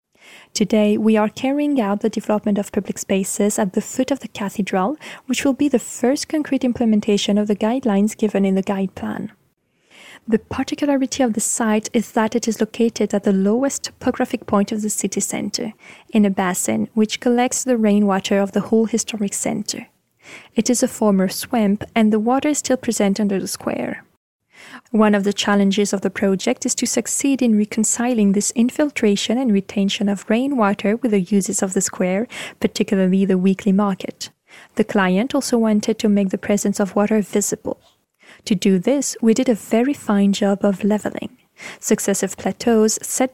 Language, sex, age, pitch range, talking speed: French, female, 20-39, 200-245 Hz, 180 wpm